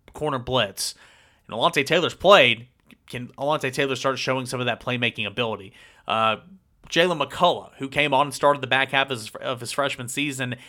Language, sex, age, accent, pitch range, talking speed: English, male, 30-49, American, 125-150 Hz, 185 wpm